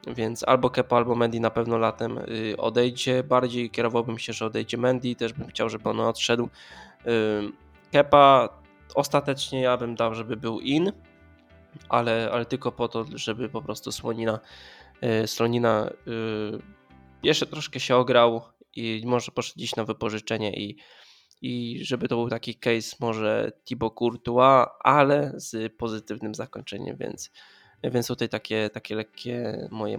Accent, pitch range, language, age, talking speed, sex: native, 110-125 Hz, Polish, 20-39, 140 wpm, male